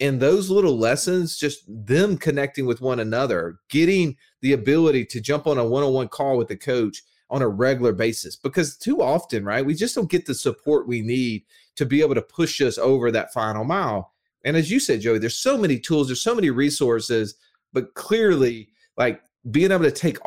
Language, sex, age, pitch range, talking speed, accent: English, male, 30-49, 125-175 Hz, 200 wpm, American